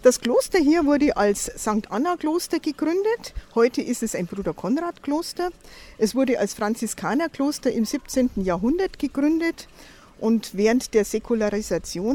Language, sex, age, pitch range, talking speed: German, female, 50-69, 200-260 Hz, 125 wpm